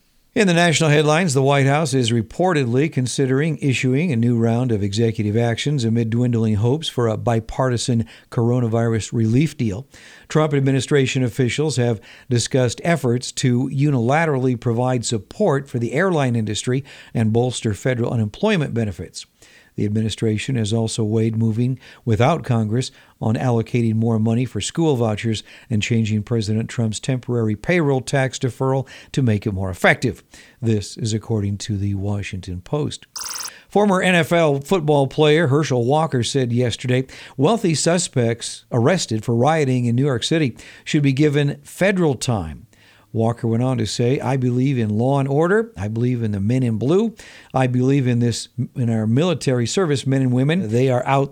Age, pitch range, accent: 50-69, 115-140 Hz, American